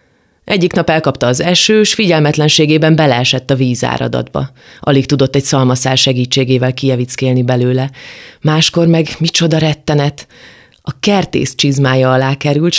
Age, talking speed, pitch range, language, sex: 30-49, 115 wpm, 130-155 Hz, Hungarian, female